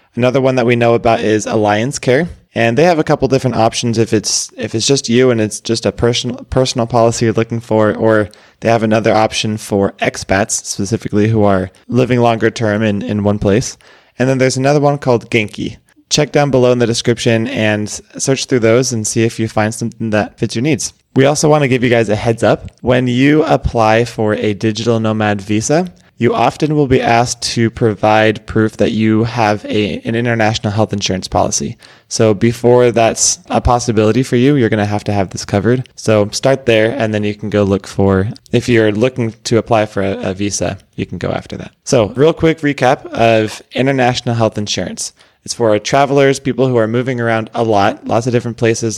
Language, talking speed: English, 210 wpm